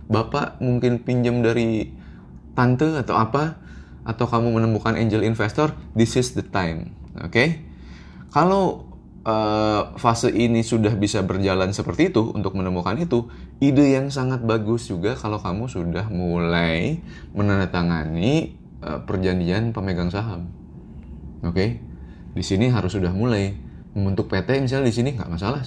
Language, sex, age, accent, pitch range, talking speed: Indonesian, male, 20-39, native, 85-110 Hz, 135 wpm